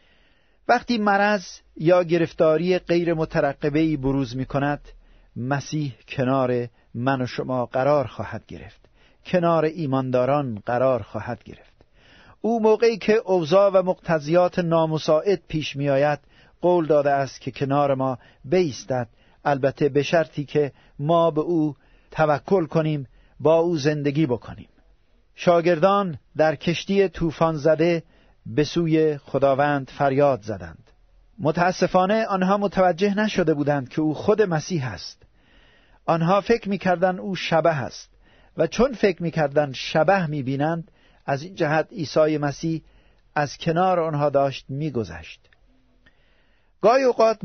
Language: Persian